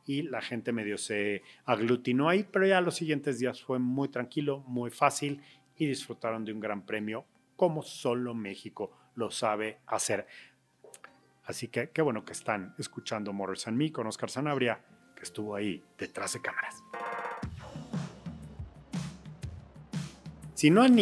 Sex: male